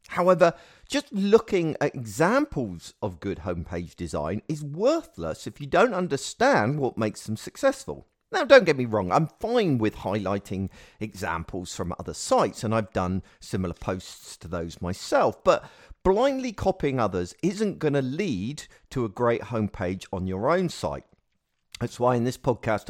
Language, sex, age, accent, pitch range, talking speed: English, male, 50-69, British, 95-140 Hz, 160 wpm